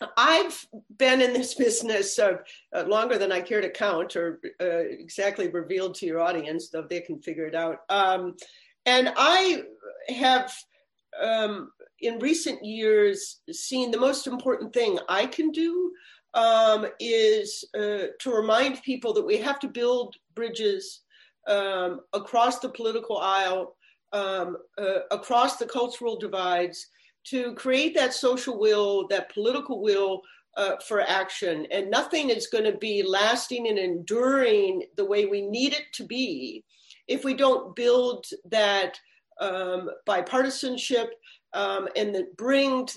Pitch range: 200-290 Hz